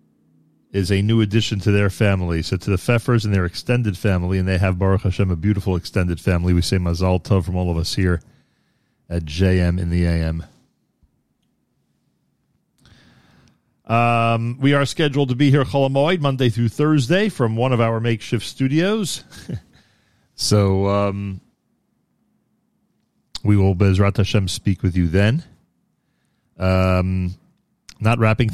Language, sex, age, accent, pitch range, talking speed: English, male, 40-59, American, 95-115 Hz, 145 wpm